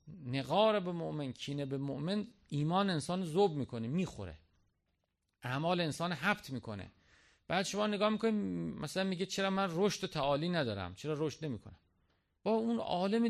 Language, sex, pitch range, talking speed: Persian, male, 120-200 Hz, 150 wpm